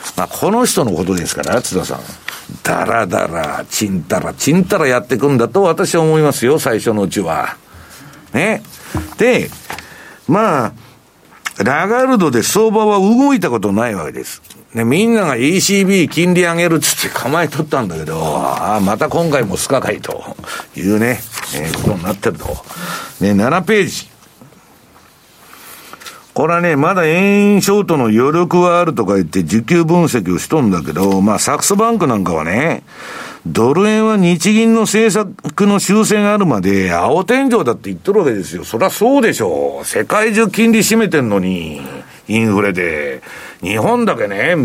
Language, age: Japanese, 60-79